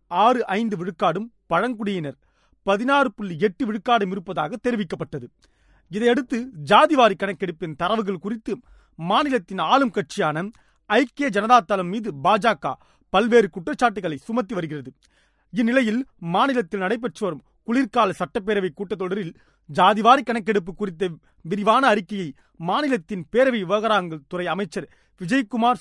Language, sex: Tamil, male